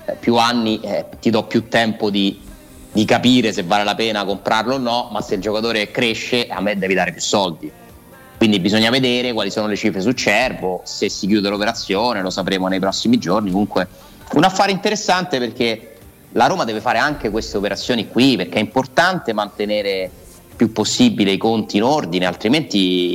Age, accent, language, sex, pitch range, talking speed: 30-49, native, Italian, male, 100-120 Hz, 185 wpm